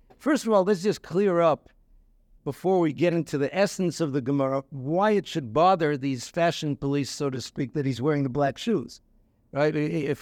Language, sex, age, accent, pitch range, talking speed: English, male, 60-79, American, 145-190 Hz, 200 wpm